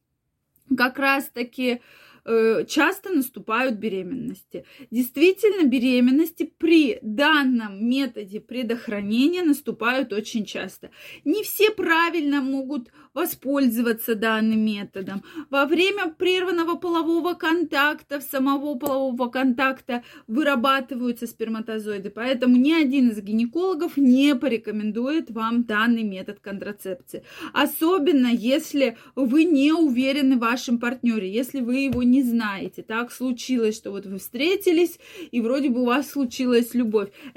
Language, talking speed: Russian, 110 wpm